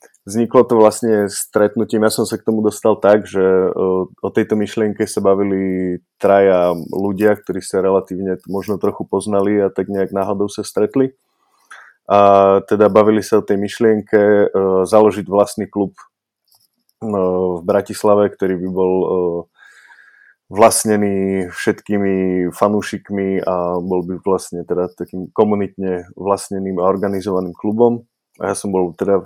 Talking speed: 135 wpm